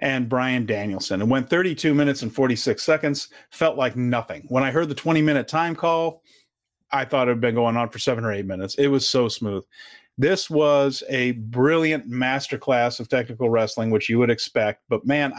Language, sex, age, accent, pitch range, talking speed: English, male, 40-59, American, 125-165 Hz, 195 wpm